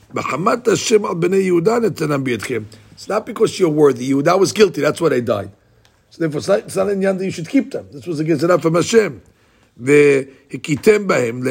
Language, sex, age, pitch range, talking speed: English, male, 60-79, 130-175 Hz, 135 wpm